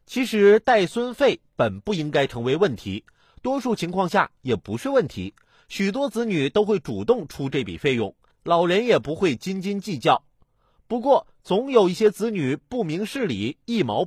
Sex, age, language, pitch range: male, 30-49, Chinese, 155-230 Hz